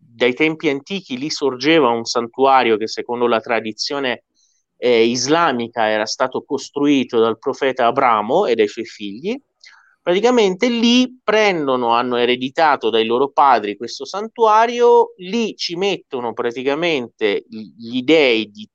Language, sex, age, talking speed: Italian, male, 30-49, 130 wpm